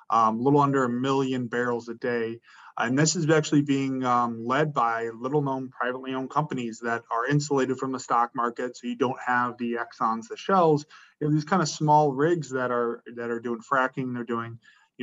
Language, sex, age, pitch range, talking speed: English, male, 20-39, 120-145 Hz, 210 wpm